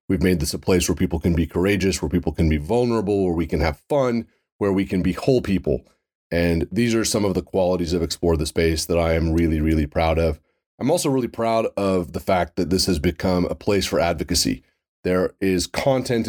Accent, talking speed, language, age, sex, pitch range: American, 230 wpm, English, 30-49, male, 90-120 Hz